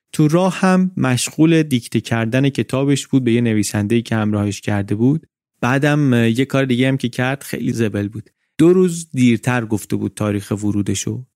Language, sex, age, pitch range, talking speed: Persian, male, 30-49, 110-130 Hz, 170 wpm